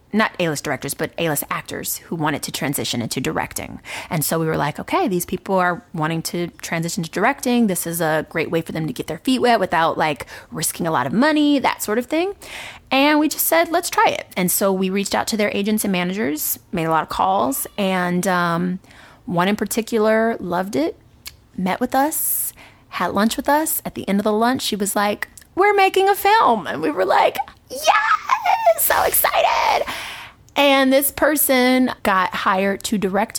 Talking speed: 200 wpm